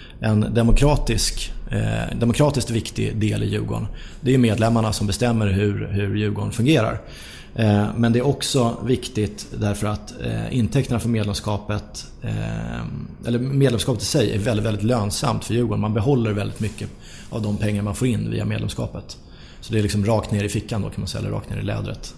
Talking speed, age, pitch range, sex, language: 185 wpm, 30-49, 105-115 Hz, male, English